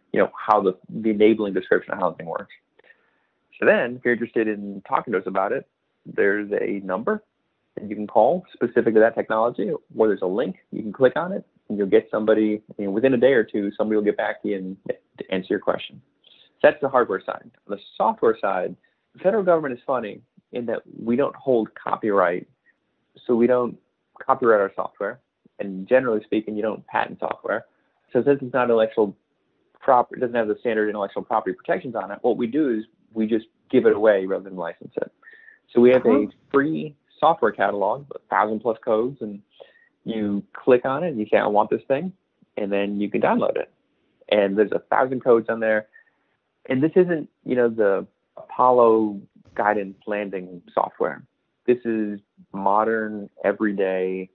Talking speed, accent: 190 wpm, American